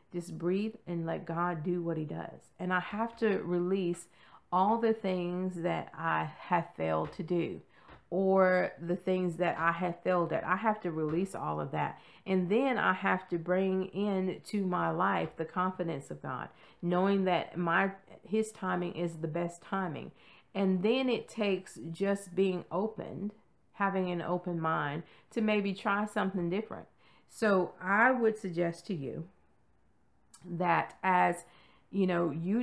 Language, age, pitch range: English, 40-59, 165-190 Hz